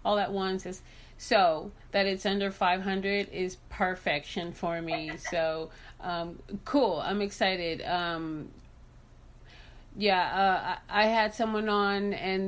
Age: 30-49